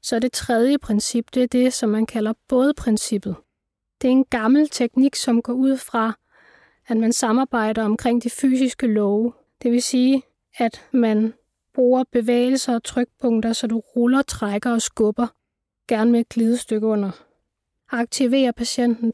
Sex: female